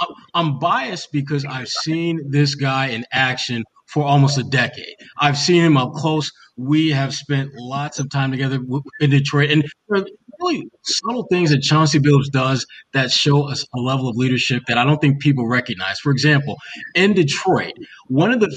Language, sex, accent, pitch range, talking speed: English, male, American, 135-175 Hz, 185 wpm